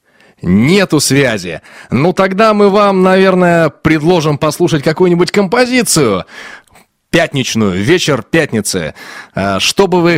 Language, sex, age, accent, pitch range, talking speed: Russian, male, 20-39, native, 135-185 Hz, 100 wpm